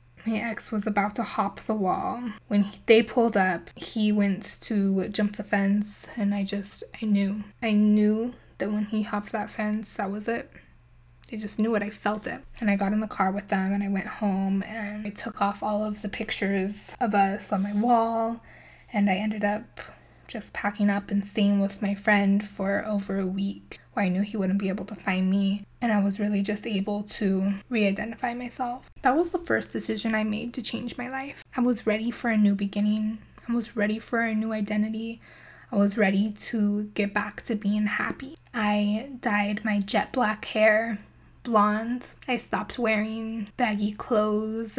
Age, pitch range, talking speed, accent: 10-29, 200-225 Hz, 195 wpm, American